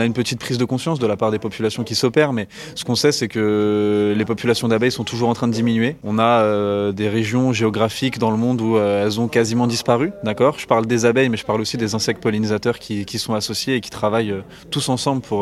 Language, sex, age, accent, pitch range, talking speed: French, male, 20-39, French, 110-130 Hz, 255 wpm